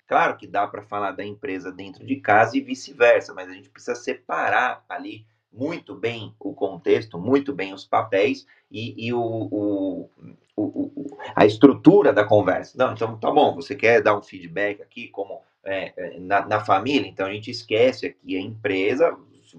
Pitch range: 105-140 Hz